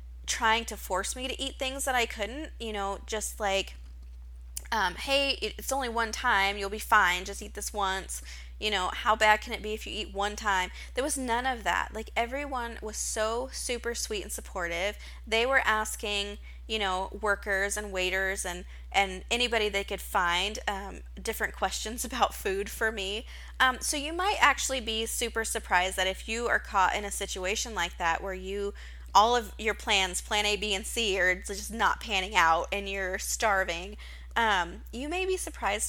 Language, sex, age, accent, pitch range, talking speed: English, female, 20-39, American, 185-230 Hz, 190 wpm